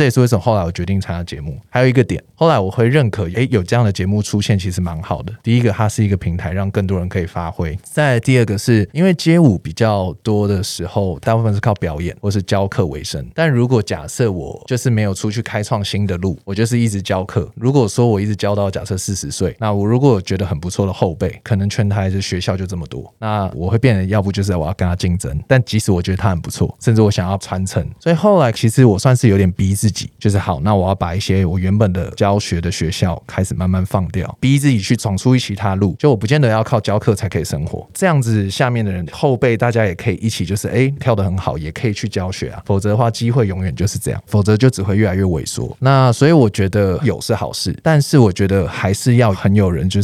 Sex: male